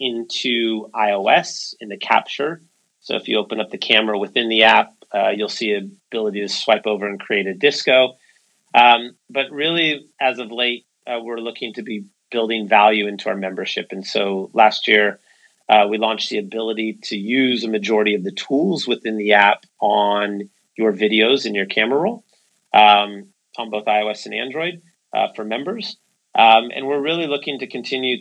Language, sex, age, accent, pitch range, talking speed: English, male, 30-49, American, 105-125 Hz, 180 wpm